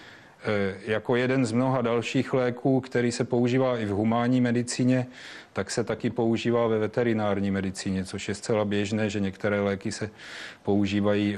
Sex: male